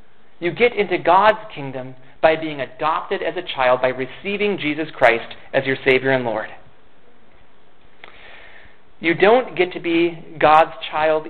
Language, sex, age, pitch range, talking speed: English, male, 30-49, 140-205 Hz, 145 wpm